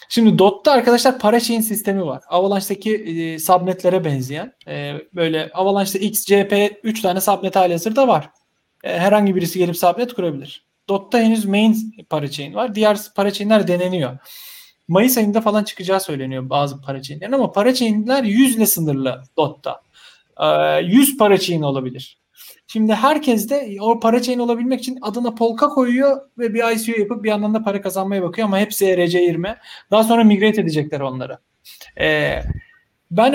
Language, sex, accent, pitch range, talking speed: Turkish, male, native, 185-230 Hz, 155 wpm